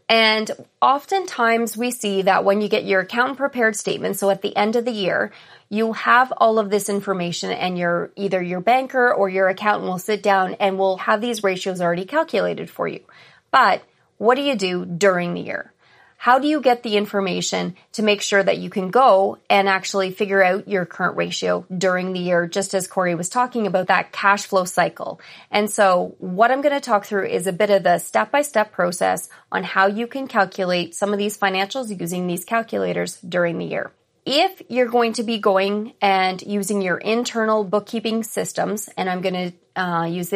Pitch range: 185-230 Hz